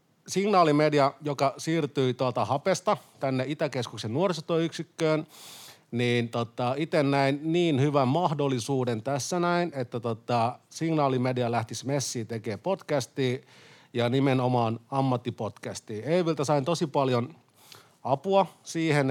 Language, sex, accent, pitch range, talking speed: Finnish, male, native, 120-150 Hz, 105 wpm